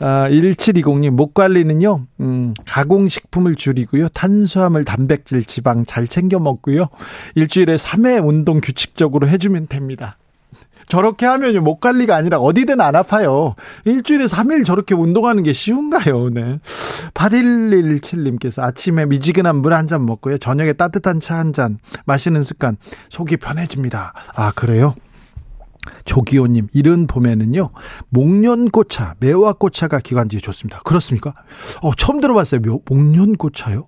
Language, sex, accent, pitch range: Korean, male, native, 125-170 Hz